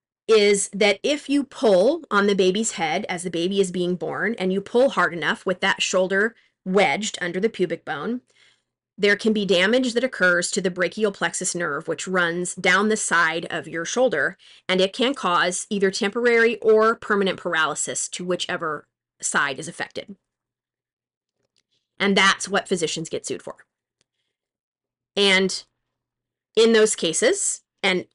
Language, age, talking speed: English, 30-49, 155 wpm